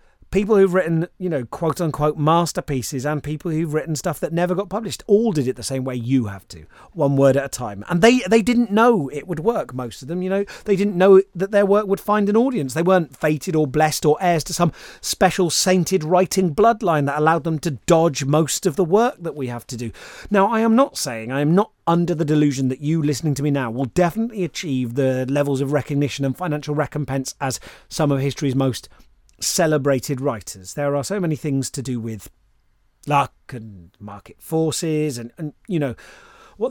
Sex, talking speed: male, 215 wpm